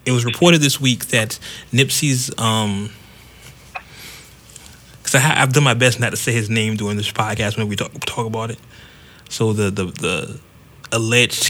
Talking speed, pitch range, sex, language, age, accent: 170 wpm, 110-125 Hz, male, English, 30-49, American